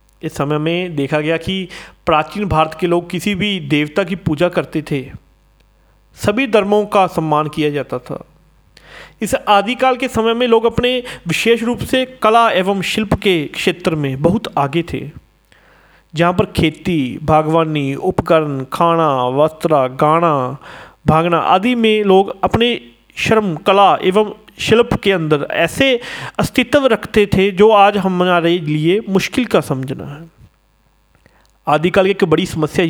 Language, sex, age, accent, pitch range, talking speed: Hindi, male, 40-59, native, 155-210 Hz, 145 wpm